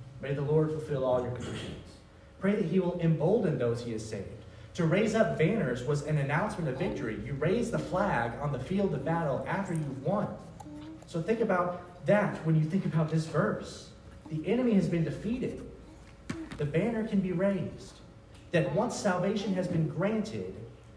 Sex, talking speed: male, 180 wpm